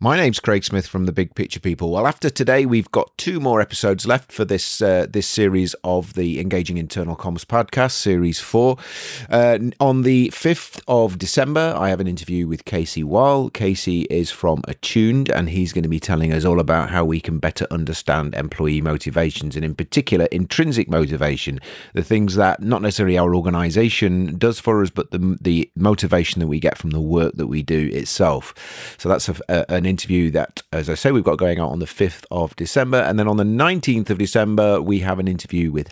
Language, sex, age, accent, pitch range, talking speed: English, male, 30-49, British, 75-100 Hz, 205 wpm